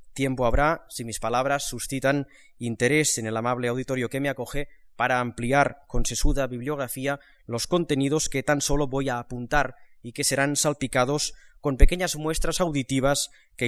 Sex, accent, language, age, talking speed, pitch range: male, Spanish, Spanish, 20-39, 160 wpm, 125-155 Hz